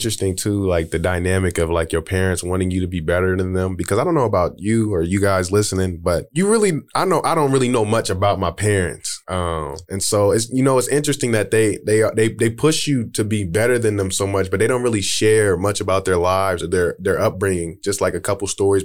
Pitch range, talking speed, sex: 90-110 Hz, 255 wpm, male